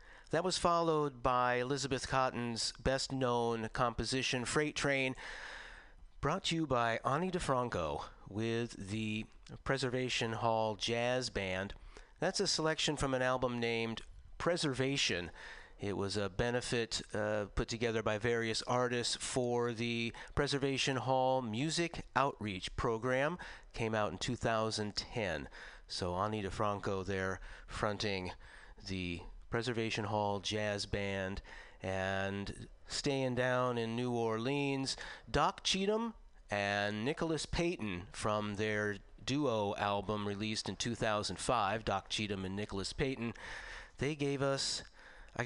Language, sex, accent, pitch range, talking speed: English, male, American, 105-135 Hz, 115 wpm